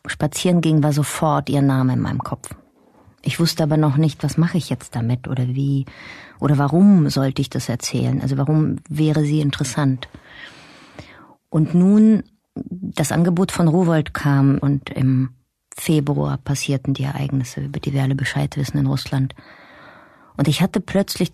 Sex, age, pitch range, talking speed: female, 30-49, 135-160 Hz, 160 wpm